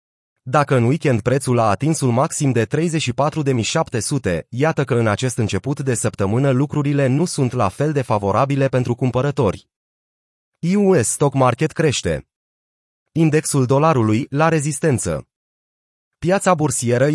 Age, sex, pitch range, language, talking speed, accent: 30-49, male, 115-150 Hz, Romanian, 125 wpm, native